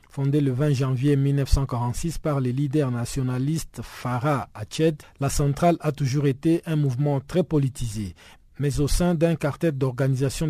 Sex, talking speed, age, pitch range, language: male, 150 wpm, 50-69, 135-160 Hz, French